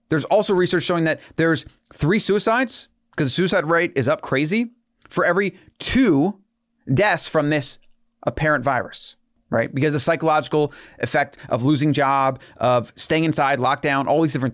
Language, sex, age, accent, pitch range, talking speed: English, male, 30-49, American, 135-175 Hz, 155 wpm